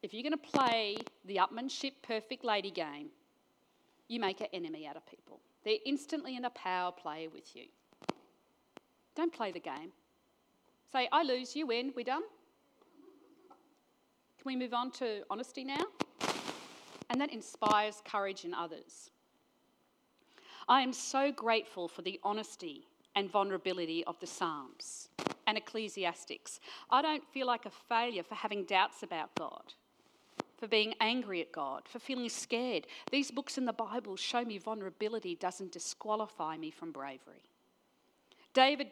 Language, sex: English, female